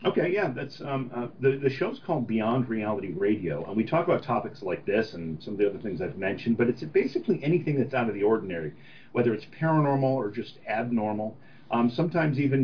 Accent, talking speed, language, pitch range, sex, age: American, 215 wpm, English, 110-145 Hz, male, 40-59